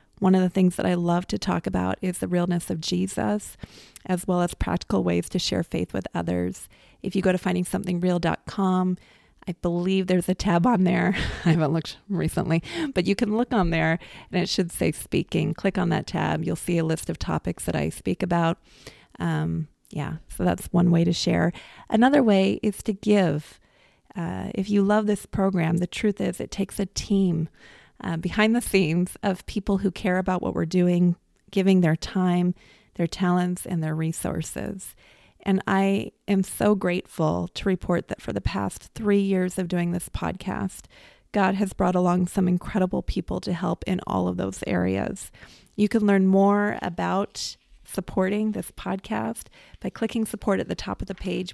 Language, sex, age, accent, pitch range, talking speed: English, female, 30-49, American, 165-195 Hz, 185 wpm